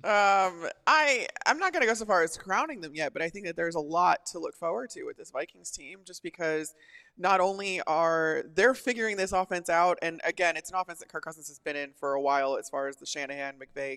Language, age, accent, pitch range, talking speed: English, 20-39, American, 145-195 Hz, 250 wpm